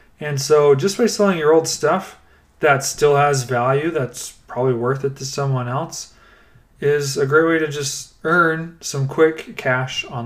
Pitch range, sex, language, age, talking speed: 125-155 Hz, male, English, 30-49, 175 wpm